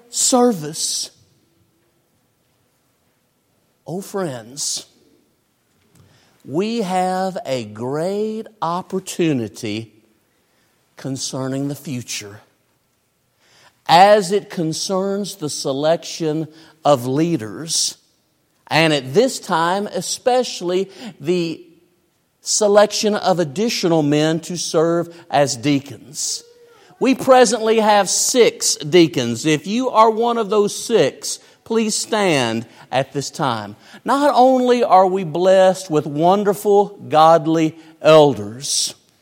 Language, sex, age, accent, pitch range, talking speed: English, male, 50-69, American, 145-205 Hz, 90 wpm